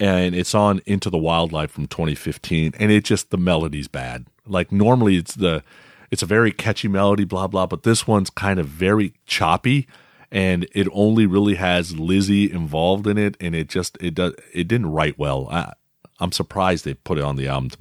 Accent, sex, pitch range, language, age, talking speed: American, male, 85-105 Hz, English, 40-59, 205 wpm